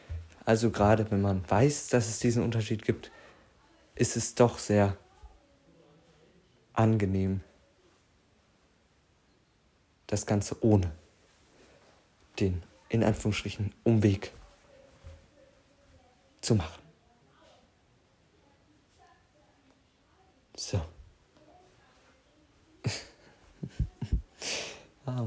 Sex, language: male, German